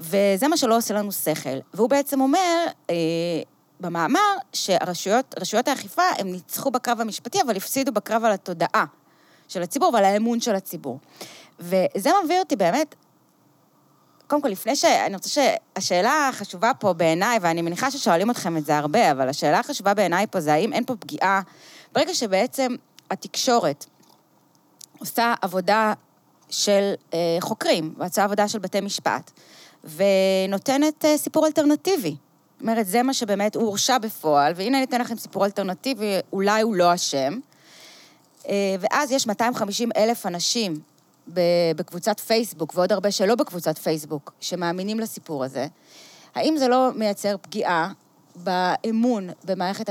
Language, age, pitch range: Hebrew, 20-39, 175-245 Hz